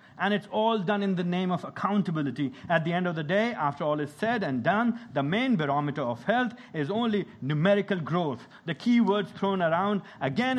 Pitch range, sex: 155-220 Hz, male